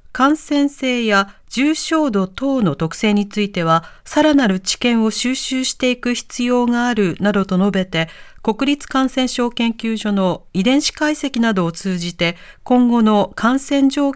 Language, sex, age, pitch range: Japanese, female, 40-59, 185-265 Hz